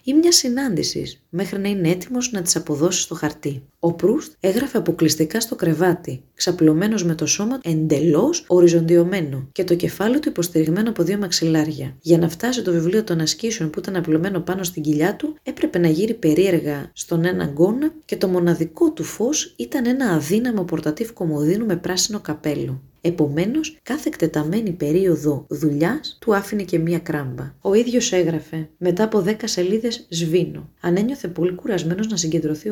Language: Greek